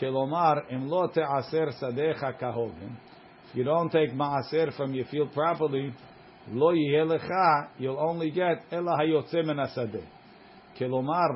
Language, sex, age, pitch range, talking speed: English, male, 50-69, 130-165 Hz, 100 wpm